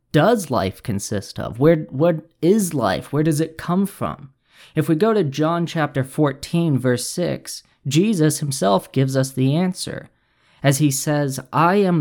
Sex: male